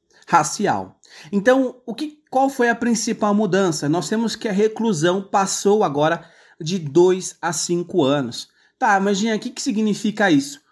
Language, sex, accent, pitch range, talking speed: Portuguese, male, Brazilian, 155-220 Hz, 150 wpm